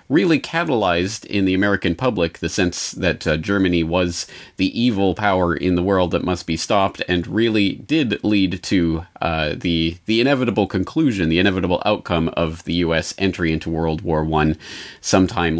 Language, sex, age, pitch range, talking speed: English, male, 30-49, 85-100 Hz, 170 wpm